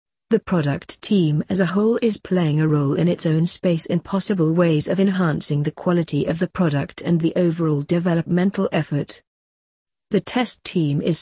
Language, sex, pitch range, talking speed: English, female, 155-195 Hz, 175 wpm